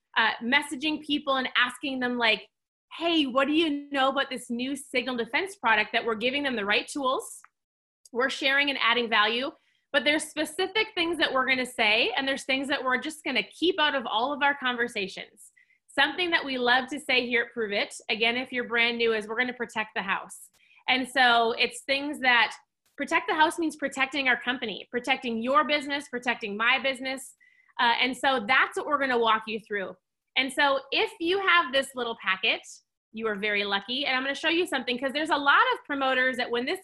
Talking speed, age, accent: 205 wpm, 30-49, American